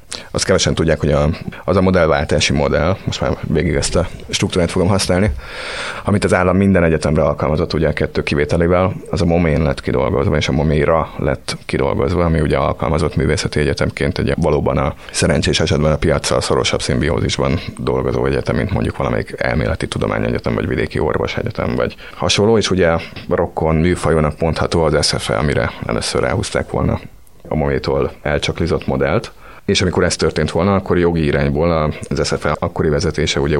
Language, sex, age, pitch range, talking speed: Hungarian, male, 30-49, 75-85 Hz, 165 wpm